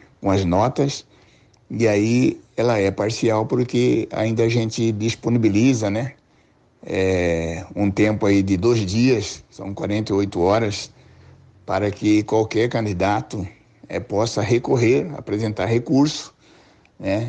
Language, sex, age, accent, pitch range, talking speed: Portuguese, male, 60-79, Brazilian, 100-115 Hz, 110 wpm